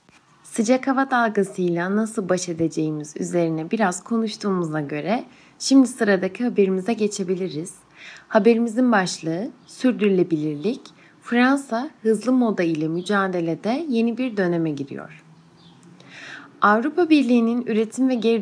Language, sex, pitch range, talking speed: Turkish, female, 170-230 Hz, 100 wpm